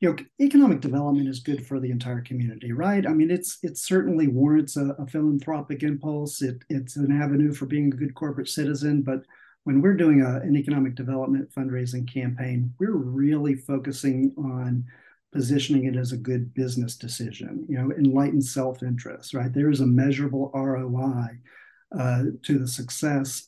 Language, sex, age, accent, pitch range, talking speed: English, male, 50-69, American, 130-145 Hz, 170 wpm